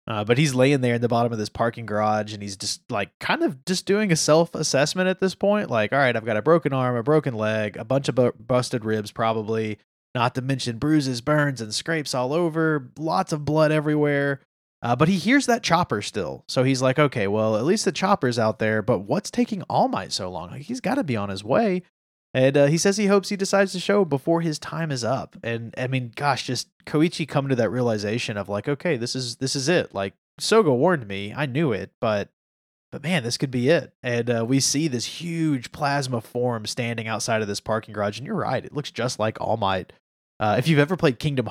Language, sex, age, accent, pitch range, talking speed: English, male, 20-39, American, 110-155 Hz, 235 wpm